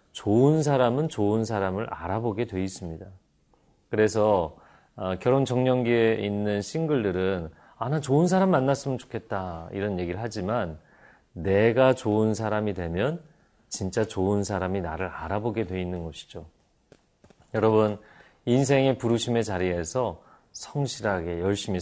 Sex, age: male, 40-59